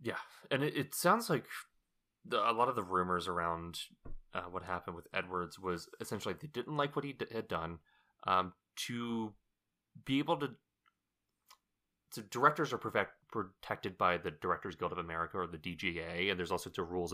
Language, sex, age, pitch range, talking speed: English, male, 30-49, 85-105 Hz, 185 wpm